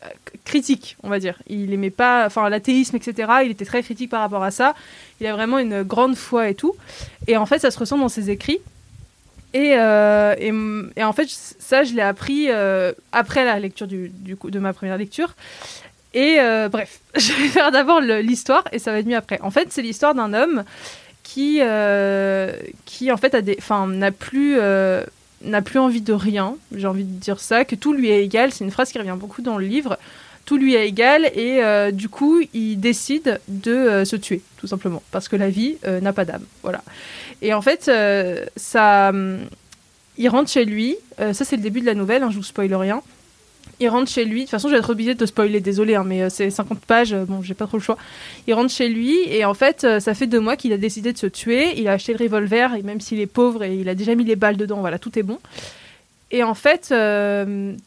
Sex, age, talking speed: female, 20-39, 235 wpm